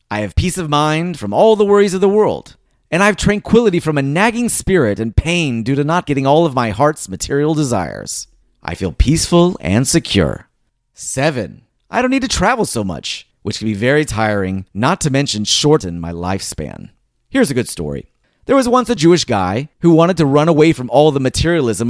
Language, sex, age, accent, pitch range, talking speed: English, male, 30-49, American, 105-155 Hz, 205 wpm